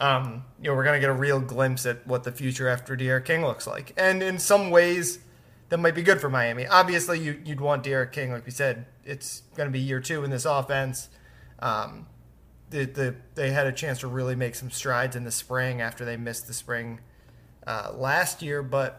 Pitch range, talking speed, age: 120-145 Hz, 220 wpm, 20-39